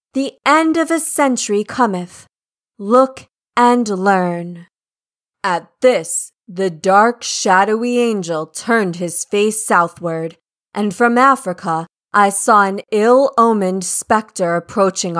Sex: female